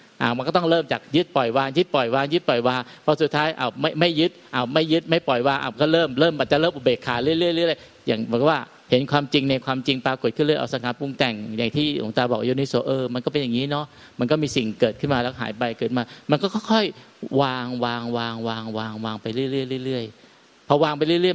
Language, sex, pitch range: Thai, male, 120-160 Hz